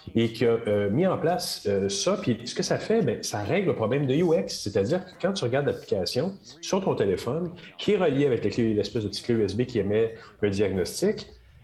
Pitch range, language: 105-160 Hz, French